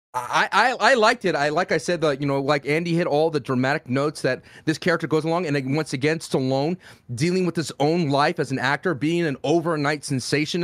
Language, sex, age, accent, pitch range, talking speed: English, male, 30-49, American, 130-165 Hz, 225 wpm